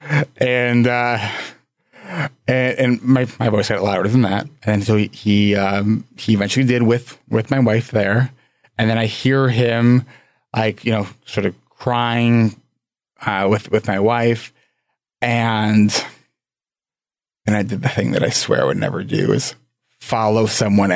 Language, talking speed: English, 160 wpm